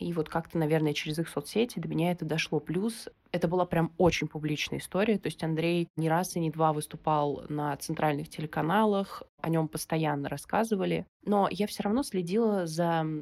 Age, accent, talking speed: 20-39, native, 180 wpm